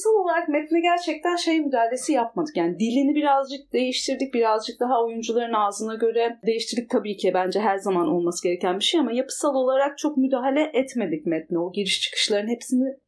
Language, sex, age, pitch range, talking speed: Turkish, female, 30-49, 230-325 Hz, 170 wpm